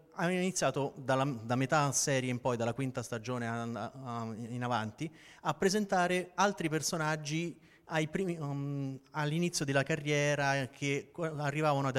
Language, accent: Italian, native